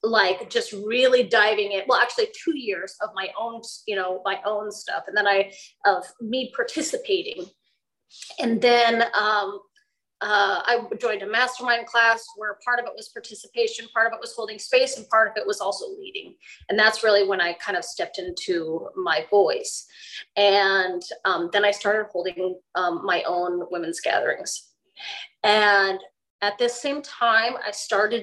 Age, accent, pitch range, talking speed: 30-49, American, 195-270 Hz, 170 wpm